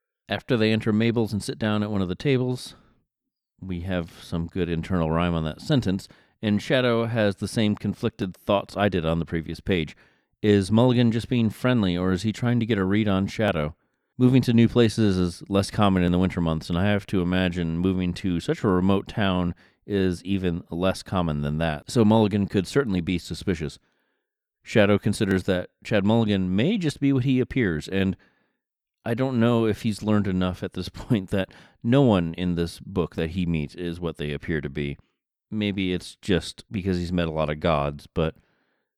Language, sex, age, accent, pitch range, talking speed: English, male, 30-49, American, 85-105 Hz, 200 wpm